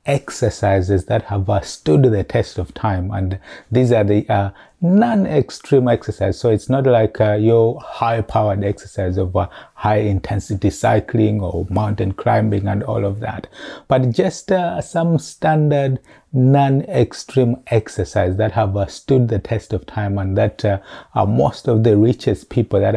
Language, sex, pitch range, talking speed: English, male, 100-120 Hz, 155 wpm